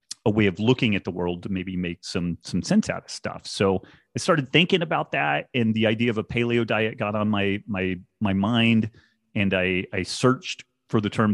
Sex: male